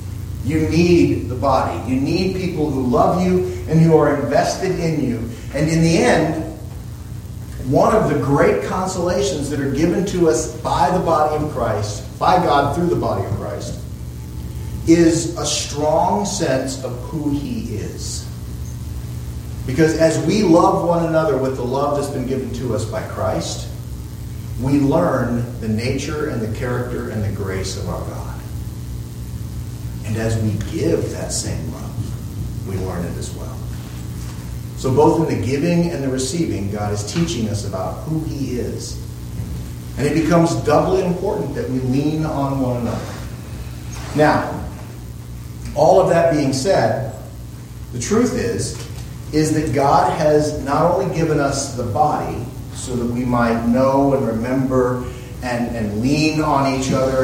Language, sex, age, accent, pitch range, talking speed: English, male, 40-59, American, 110-150 Hz, 155 wpm